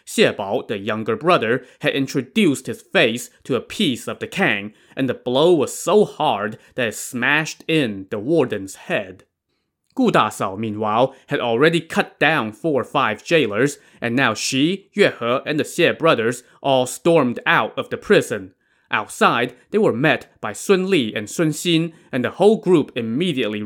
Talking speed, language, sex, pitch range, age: 170 wpm, English, male, 125-170 Hz, 20-39